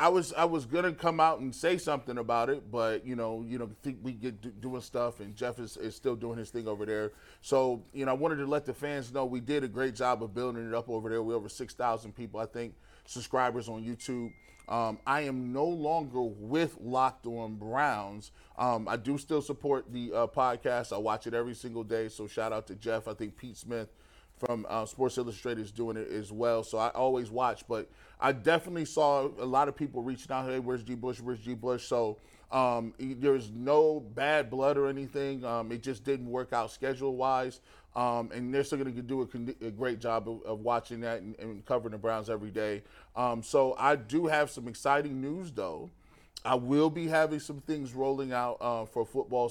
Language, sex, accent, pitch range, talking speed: English, male, American, 115-135 Hz, 225 wpm